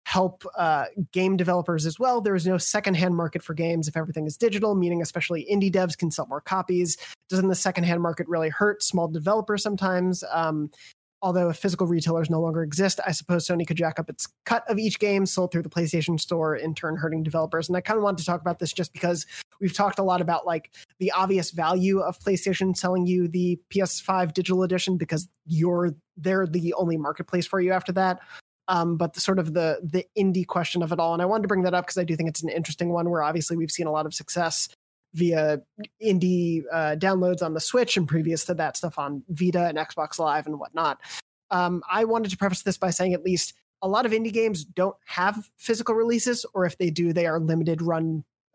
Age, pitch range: 20-39, 165-190 Hz